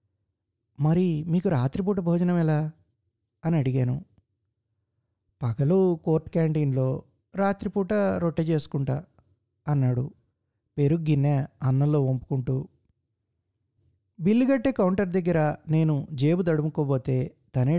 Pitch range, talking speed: 115-160 Hz, 80 wpm